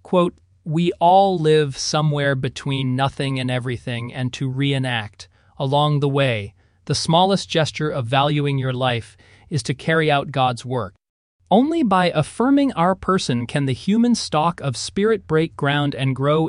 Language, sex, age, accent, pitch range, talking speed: English, male, 30-49, American, 125-180 Hz, 155 wpm